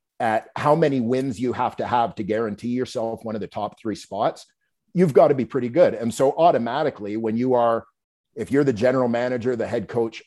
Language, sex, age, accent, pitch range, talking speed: English, male, 50-69, American, 110-135 Hz, 215 wpm